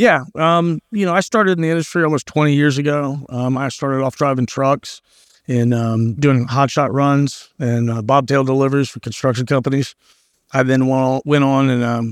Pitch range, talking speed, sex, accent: 120-140 Hz, 190 wpm, male, American